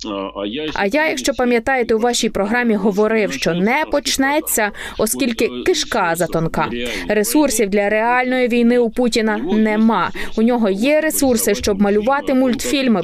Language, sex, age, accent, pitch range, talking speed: Ukrainian, female, 20-39, native, 195-260 Hz, 130 wpm